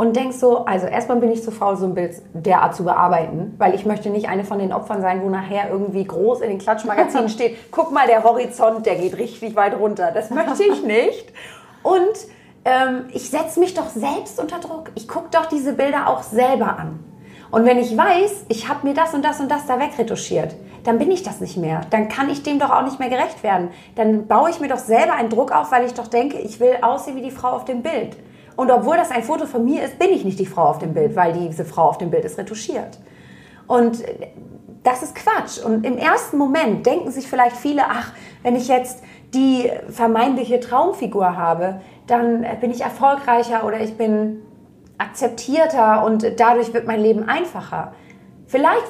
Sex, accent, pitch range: female, German, 215-280 Hz